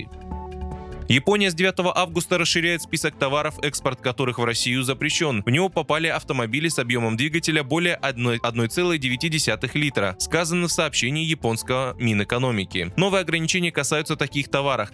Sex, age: male, 20-39